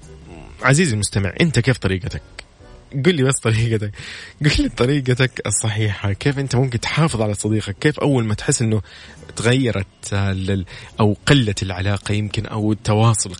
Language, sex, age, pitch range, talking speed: Arabic, male, 20-39, 105-130 Hz, 140 wpm